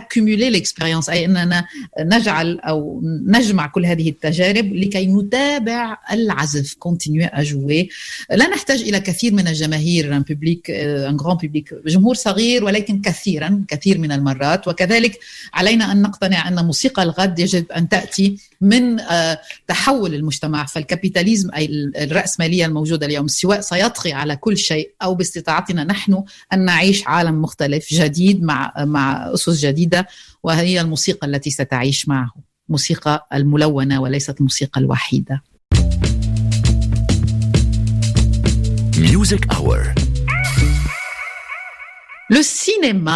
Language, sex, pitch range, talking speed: Arabic, female, 145-195 Hz, 90 wpm